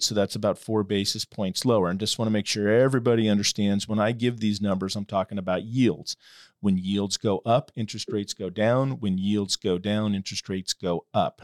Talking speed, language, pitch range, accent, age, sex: 210 wpm, English, 105-120 Hz, American, 40-59, male